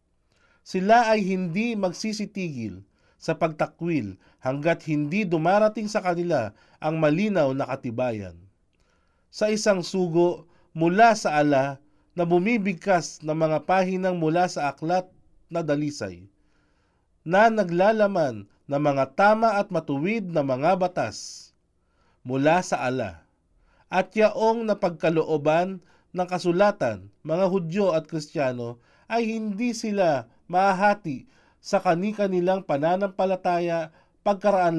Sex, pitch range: male, 145-200 Hz